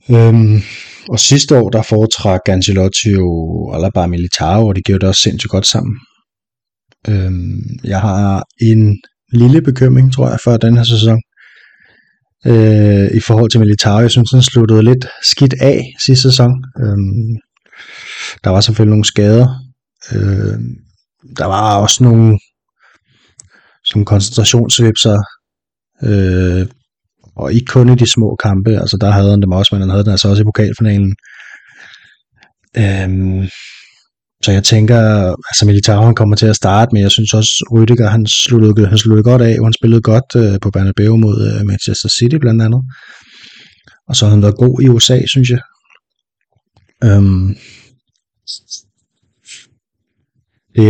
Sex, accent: male, native